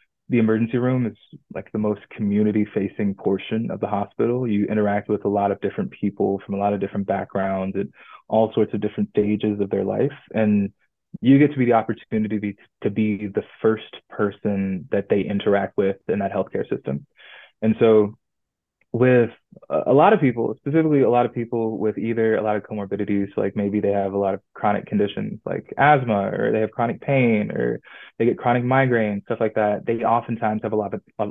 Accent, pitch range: American, 100-115 Hz